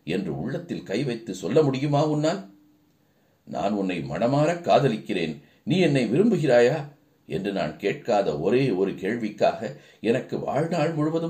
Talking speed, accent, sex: 120 wpm, native, male